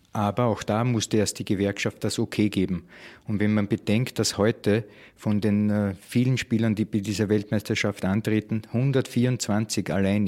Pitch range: 100-115 Hz